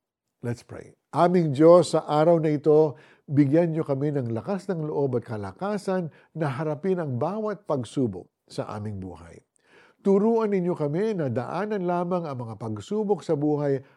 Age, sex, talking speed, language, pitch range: 50-69, male, 155 wpm, Filipino, 120-180 Hz